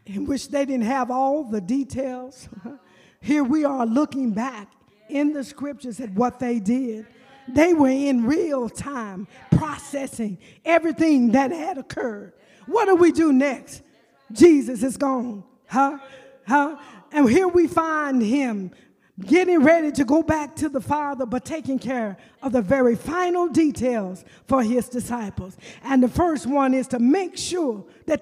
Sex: female